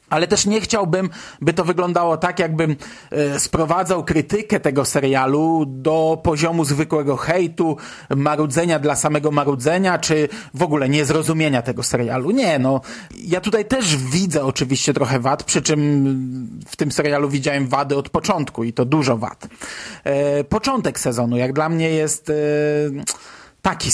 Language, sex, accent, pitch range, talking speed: Polish, male, native, 145-180 Hz, 140 wpm